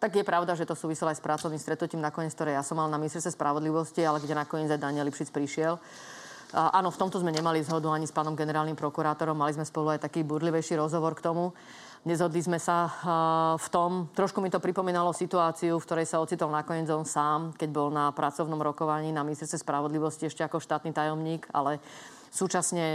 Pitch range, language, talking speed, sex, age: 155-175 Hz, Slovak, 200 wpm, female, 30-49